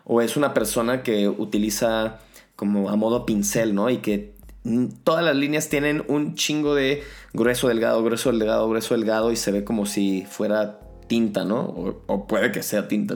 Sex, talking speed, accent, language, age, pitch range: male, 180 wpm, Mexican, Spanish, 20-39, 105-125 Hz